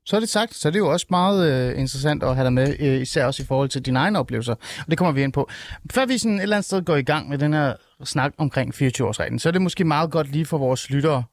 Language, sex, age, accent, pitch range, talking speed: Danish, male, 30-49, native, 130-175 Hz, 305 wpm